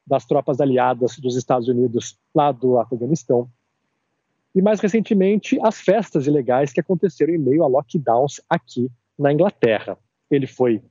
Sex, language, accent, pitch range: male, Portuguese, Brazilian, 130-180 Hz